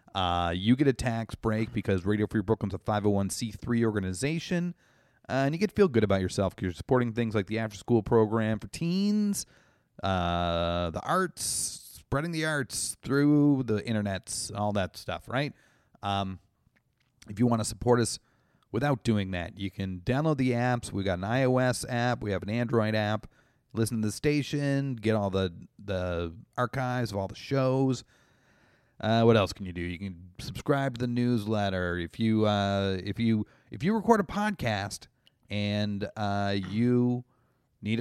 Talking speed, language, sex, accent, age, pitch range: 175 wpm, English, male, American, 30-49, 100-130 Hz